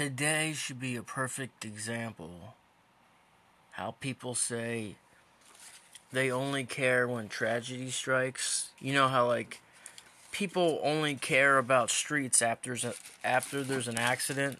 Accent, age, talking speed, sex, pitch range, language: American, 30-49, 120 wpm, male, 125-185 Hz, English